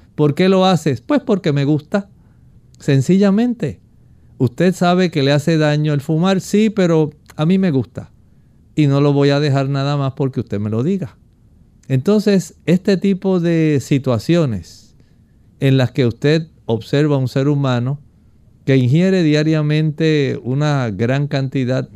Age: 50-69